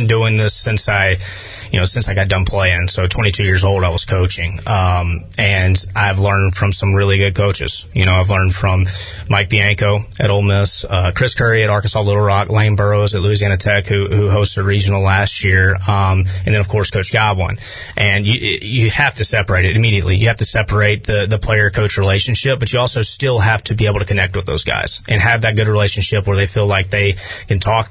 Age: 30-49